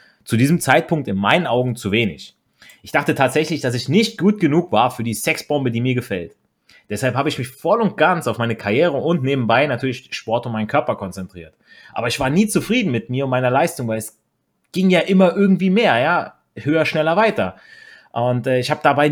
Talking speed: 205 wpm